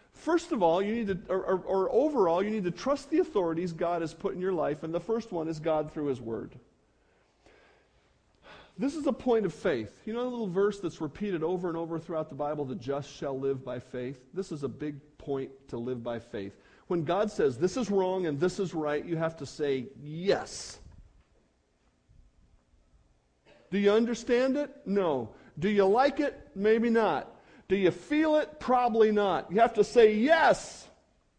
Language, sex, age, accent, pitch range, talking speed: English, male, 50-69, American, 160-235 Hz, 195 wpm